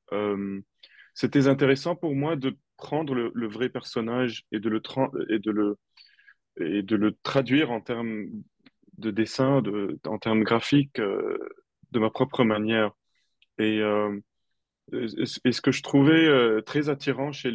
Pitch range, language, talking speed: 110-130 Hz, French, 155 wpm